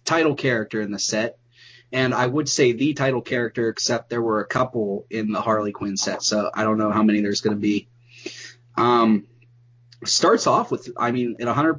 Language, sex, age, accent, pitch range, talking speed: English, male, 30-49, American, 115-130 Hz, 200 wpm